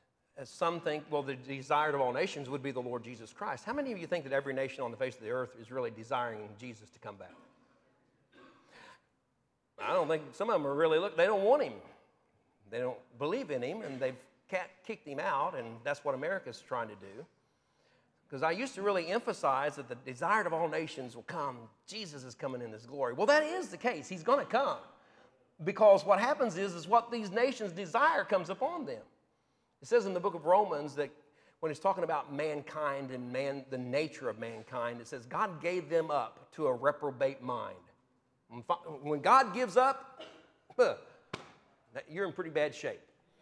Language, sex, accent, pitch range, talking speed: English, male, American, 135-210 Hz, 200 wpm